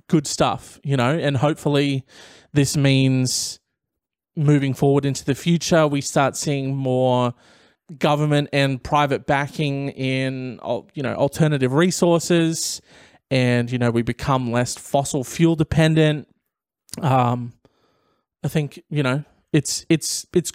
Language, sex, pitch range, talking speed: English, male, 125-155 Hz, 125 wpm